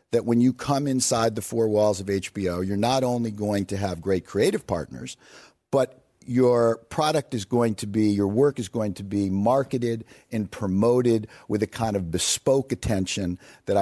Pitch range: 95-125 Hz